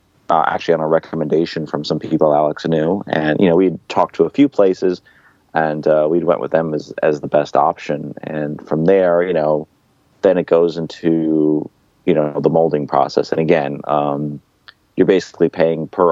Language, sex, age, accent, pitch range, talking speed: English, male, 30-49, American, 75-90 Hz, 190 wpm